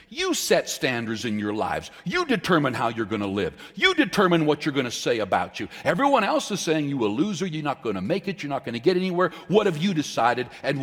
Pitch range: 130-210 Hz